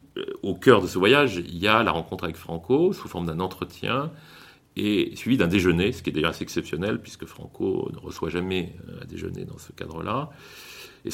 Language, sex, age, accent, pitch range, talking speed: French, male, 40-59, French, 85-110 Hz, 200 wpm